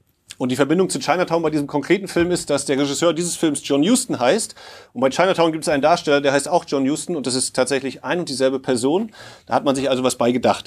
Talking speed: 260 wpm